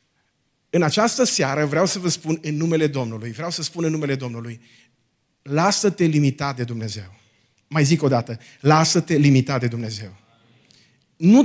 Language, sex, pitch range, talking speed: Romanian, male, 120-180 Hz, 150 wpm